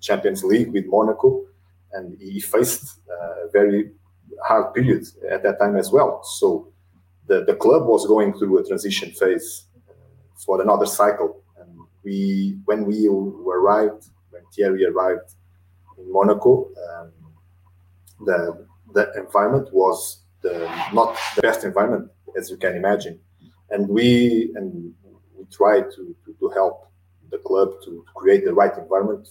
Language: English